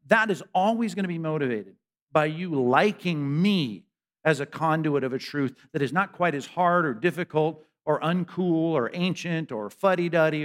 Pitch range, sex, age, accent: 150-200 Hz, male, 50-69, American